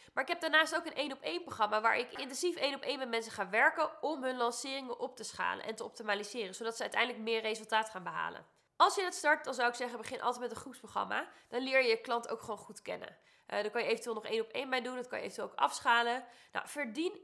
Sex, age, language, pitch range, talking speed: female, 20-39, Dutch, 225-300 Hz, 270 wpm